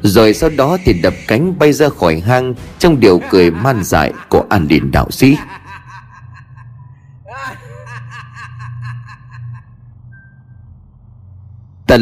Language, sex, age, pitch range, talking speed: Vietnamese, male, 30-49, 95-130 Hz, 105 wpm